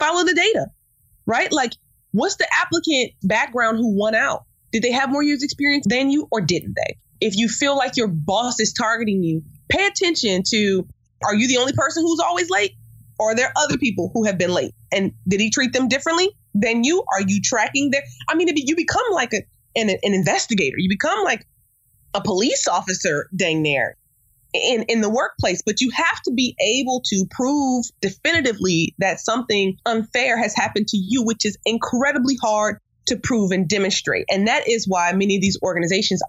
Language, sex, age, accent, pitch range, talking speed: English, female, 20-39, American, 190-255 Hz, 195 wpm